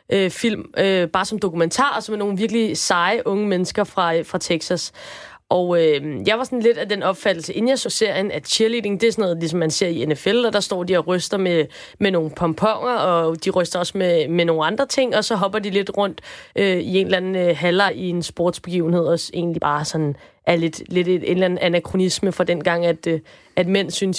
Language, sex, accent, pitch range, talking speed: Danish, female, native, 175-215 Hz, 235 wpm